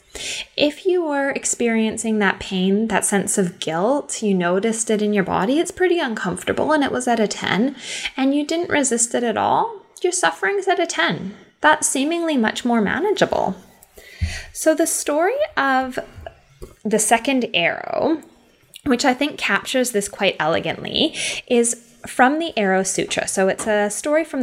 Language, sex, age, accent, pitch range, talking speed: English, female, 10-29, American, 210-300 Hz, 165 wpm